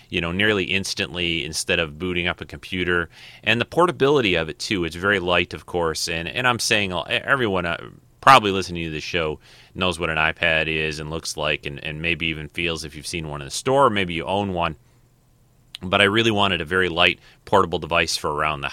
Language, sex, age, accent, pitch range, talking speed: English, male, 30-49, American, 80-100 Hz, 220 wpm